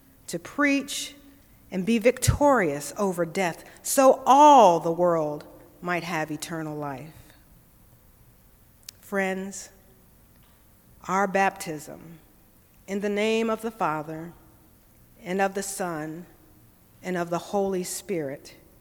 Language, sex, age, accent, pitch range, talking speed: English, female, 50-69, American, 175-235 Hz, 105 wpm